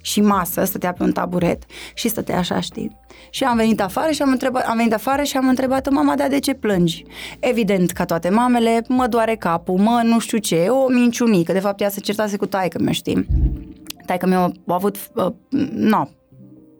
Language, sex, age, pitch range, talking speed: Romanian, female, 20-39, 180-230 Hz, 190 wpm